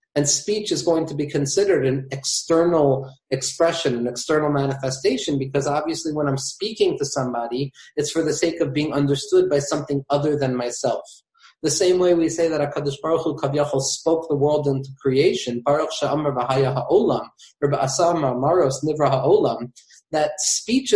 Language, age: English, 30-49